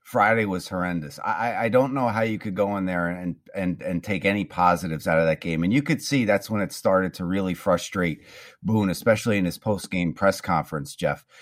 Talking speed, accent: 220 wpm, American